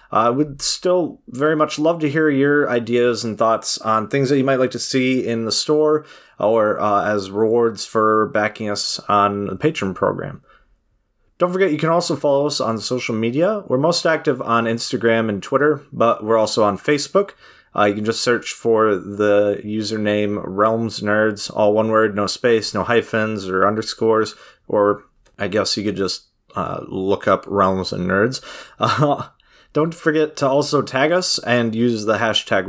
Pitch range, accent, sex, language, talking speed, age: 105-130 Hz, American, male, English, 180 wpm, 30-49